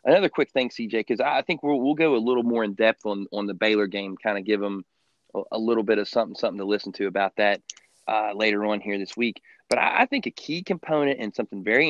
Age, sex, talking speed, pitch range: 30-49, male, 260 wpm, 105-125 Hz